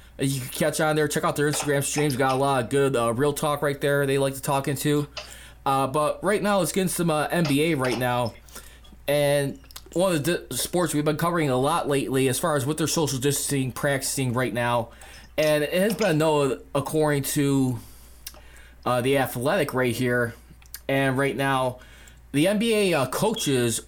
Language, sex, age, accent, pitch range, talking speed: English, male, 20-39, American, 125-150 Hz, 195 wpm